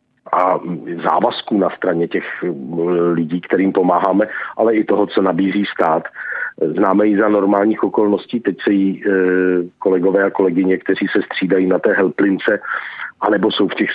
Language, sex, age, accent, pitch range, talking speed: Czech, male, 50-69, native, 90-105 Hz, 150 wpm